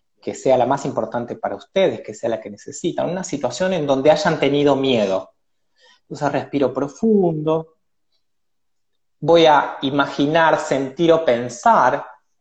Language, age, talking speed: Spanish, 30-49, 135 wpm